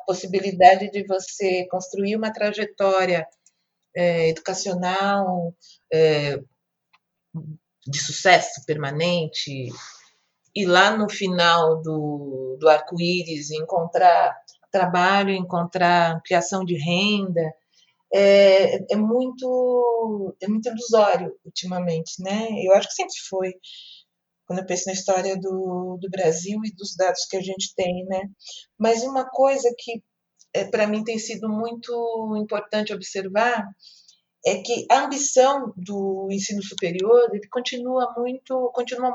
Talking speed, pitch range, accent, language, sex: 120 wpm, 180-220 Hz, Brazilian, Portuguese, female